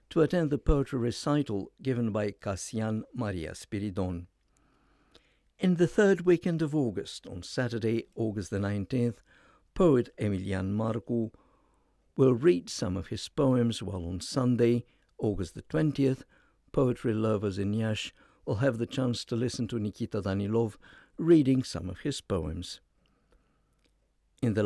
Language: English